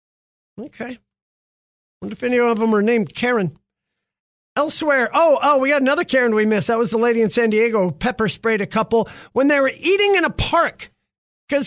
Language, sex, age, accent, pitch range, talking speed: English, male, 40-59, American, 195-270 Hz, 200 wpm